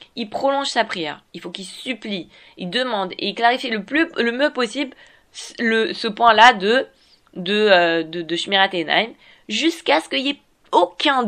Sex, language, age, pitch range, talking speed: female, French, 20-39, 180-240 Hz, 185 wpm